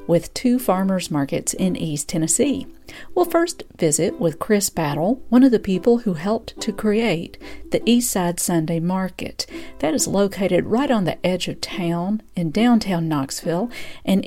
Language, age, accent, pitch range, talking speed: English, 50-69, American, 170-235 Hz, 160 wpm